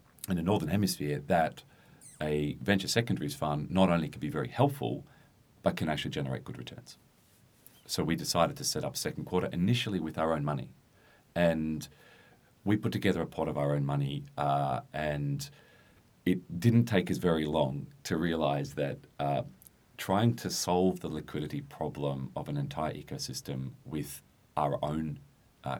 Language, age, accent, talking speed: English, 40-59, Australian, 165 wpm